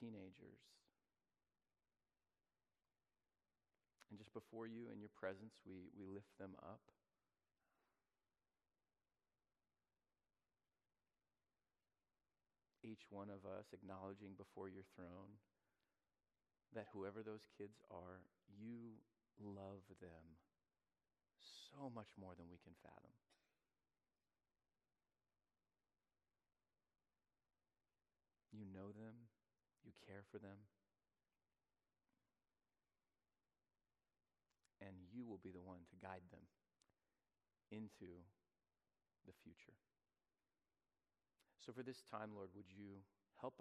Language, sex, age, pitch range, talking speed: English, male, 40-59, 95-110 Hz, 85 wpm